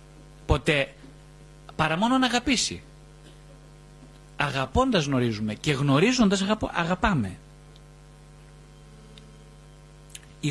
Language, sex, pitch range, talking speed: Greek, male, 135-170 Hz, 65 wpm